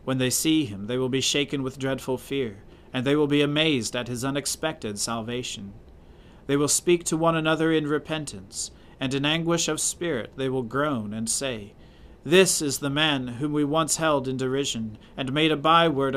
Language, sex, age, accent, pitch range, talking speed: English, male, 40-59, American, 120-150 Hz, 195 wpm